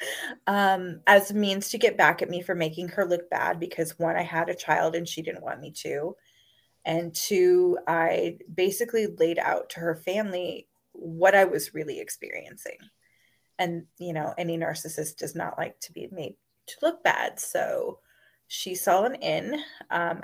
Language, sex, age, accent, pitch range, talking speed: English, female, 20-39, American, 170-210 Hz, 180 wpm